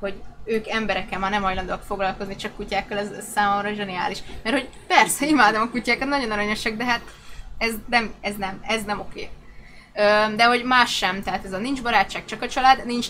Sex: female